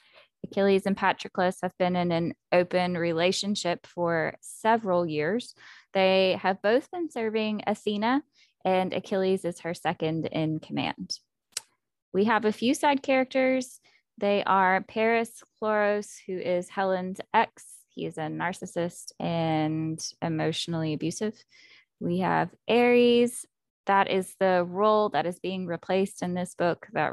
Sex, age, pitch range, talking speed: female, 10-29, 165-215 Hz, 135 wpm